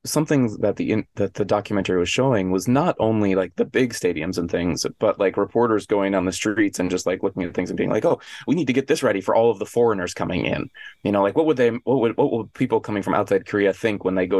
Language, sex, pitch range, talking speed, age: English, male, 95-110 Hz, 275 wpm, 20-39